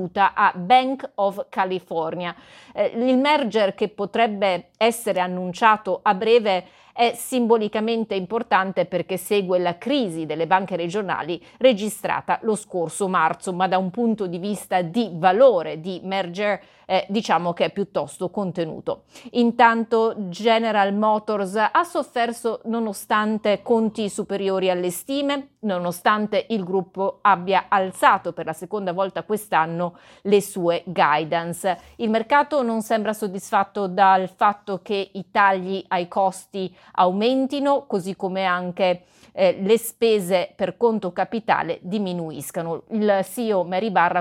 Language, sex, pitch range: Italian, female, 180-220 Hz